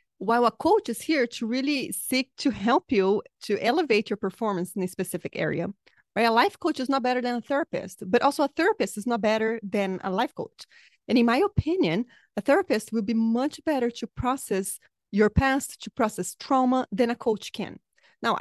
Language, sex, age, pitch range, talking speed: English, female, 30-49, 200-260 Hz, 200 wpm